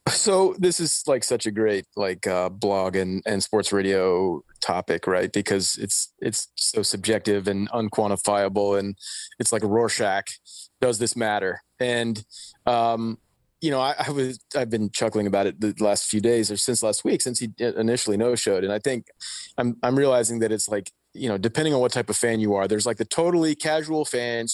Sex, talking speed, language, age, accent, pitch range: male, 195 wpm, English, 30-49, American, 105-130 Hz